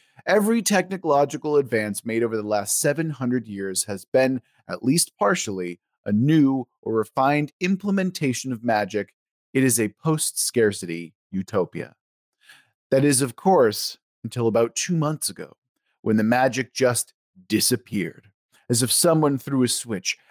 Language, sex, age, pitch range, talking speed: English, male, 30-49, 110-145 Hz, 135 wpm